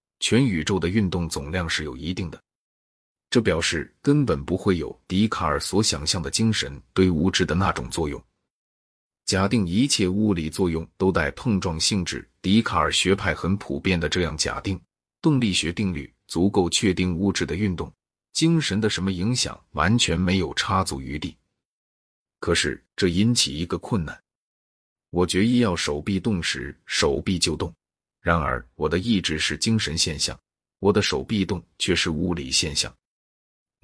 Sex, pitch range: male, 85-105 Hz